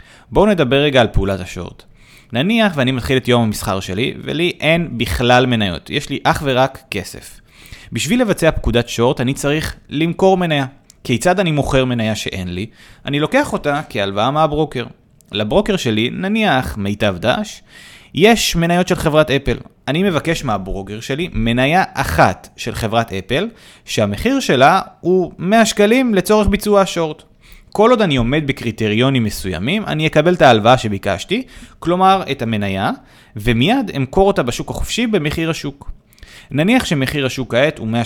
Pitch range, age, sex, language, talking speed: 115-185 Hz, 30-49, male, Hebrew, 150 wpm